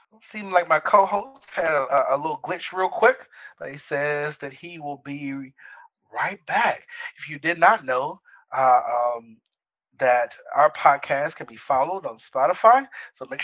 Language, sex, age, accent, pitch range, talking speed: English, male, 40-59, American, 135-170 Hz, 170 wpm